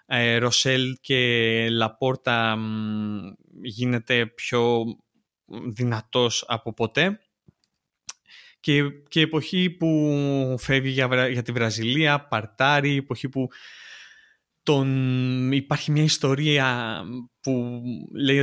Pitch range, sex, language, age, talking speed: 115-135 Hz, male, Greek, 20-39, 90 wpm